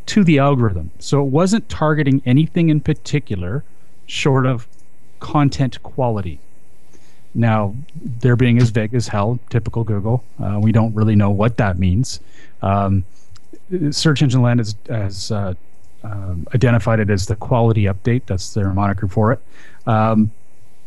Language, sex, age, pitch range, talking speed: English, male, 30-49, 105-140 Hz, 145 wpm